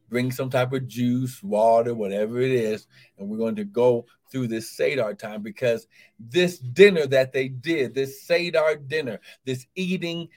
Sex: male